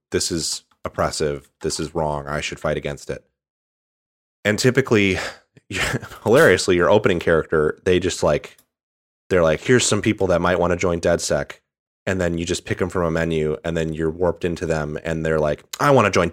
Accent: American